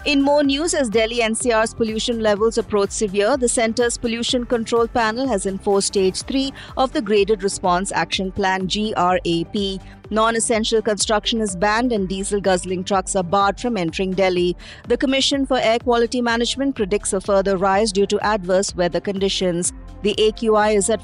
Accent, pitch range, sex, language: Indian, 195-240 Hz, female, English